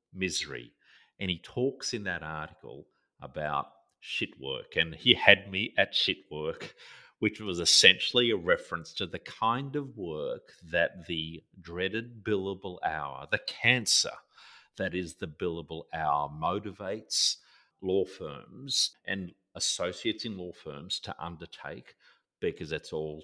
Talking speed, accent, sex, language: 135 wpm, Australian, male, English